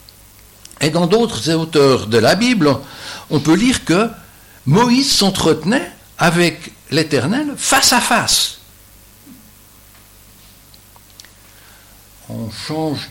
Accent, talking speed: French, 90 wpm